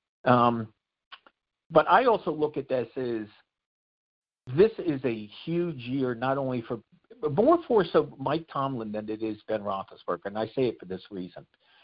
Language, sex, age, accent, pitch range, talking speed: English, male, 50-69, American, 110-135 Hz, 170 wpm